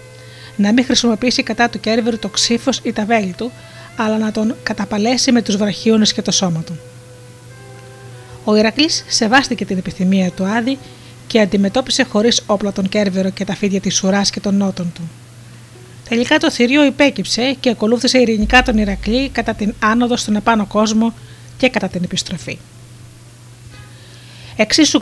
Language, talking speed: Greek, 155 wpm